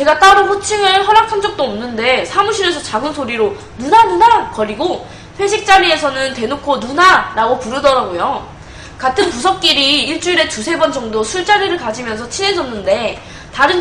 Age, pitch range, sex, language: 20-39, 255-370 Hz, female, Korean